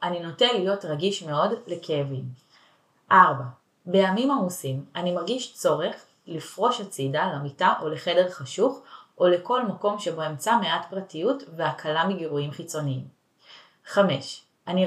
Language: Hebrew